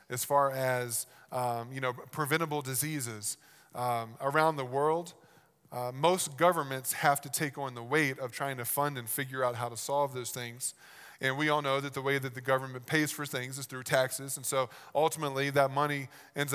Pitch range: 125-145 Hz